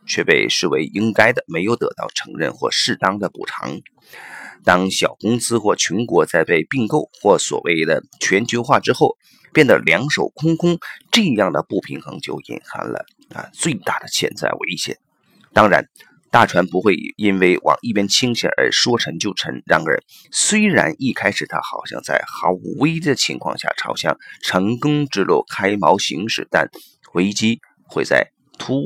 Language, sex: Chinese, male